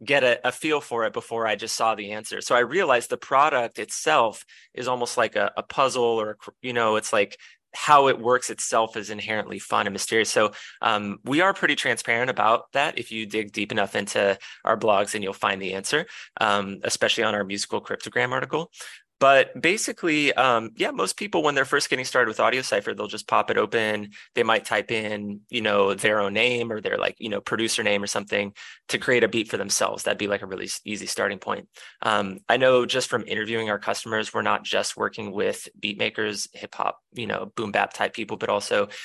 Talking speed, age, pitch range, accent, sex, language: 220 wpm, 20-39, 105-125 Hz, American, male, English